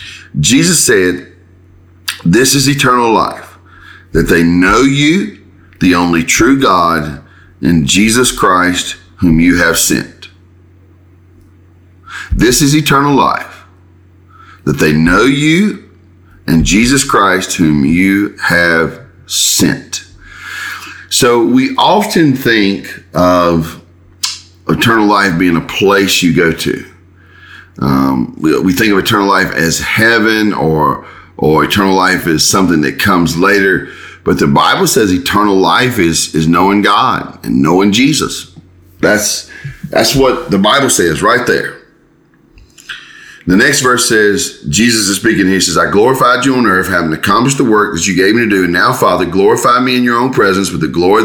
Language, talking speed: English, 145 wpm